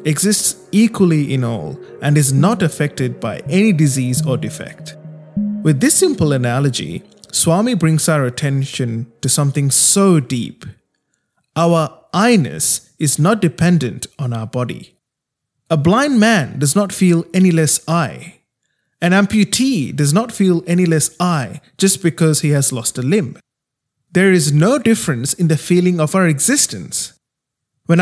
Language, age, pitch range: English, 20-39, 140-185 Hz